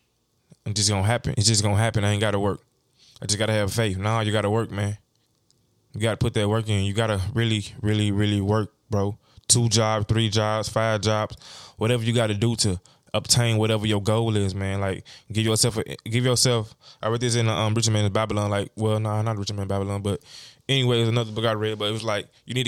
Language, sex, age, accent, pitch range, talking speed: English, male, 20-39, American, 105-115 Hz, 230 wpm